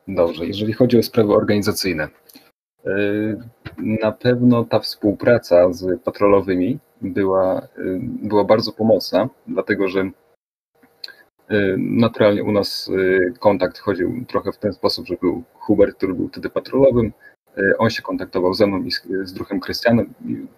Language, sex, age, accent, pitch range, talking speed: Polish, male, 30-49, native, 100-120 Hz, 125 wpm